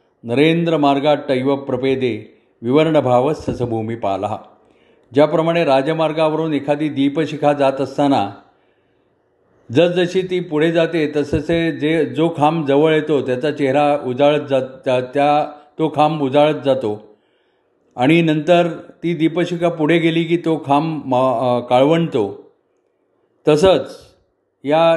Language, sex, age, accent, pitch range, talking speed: Marathi, male, 40-59, native, 135-160 Hz, 110 wpm